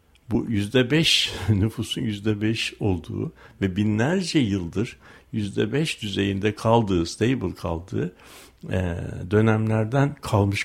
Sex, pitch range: male, 105-140 Hz